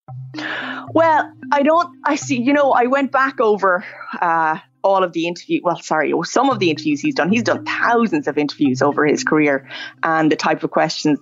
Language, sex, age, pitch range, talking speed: English, female, 20-39, 155-190 Hz, 200 wpm